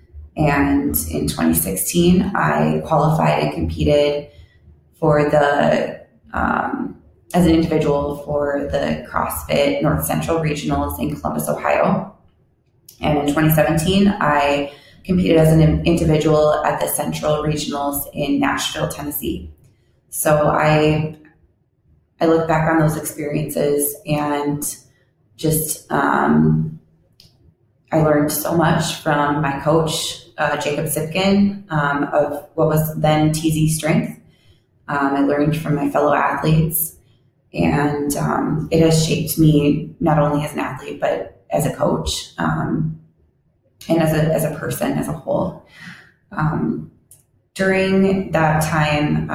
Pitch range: 140-155 Hz